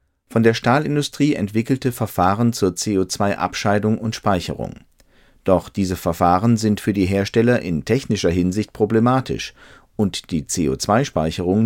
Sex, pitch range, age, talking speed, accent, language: male, 95-125 Hz, 40-59, 120 wpm, German, German